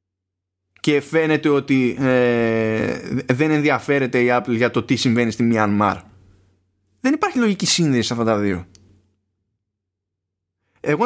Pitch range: 95-155 Hz